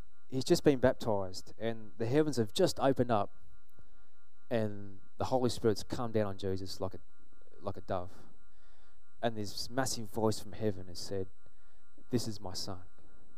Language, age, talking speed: English, 20-39, 160 wpm